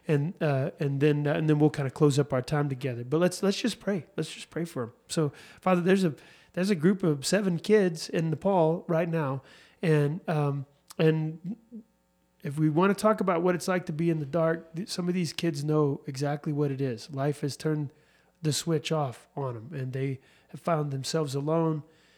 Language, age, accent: English, 30-49, American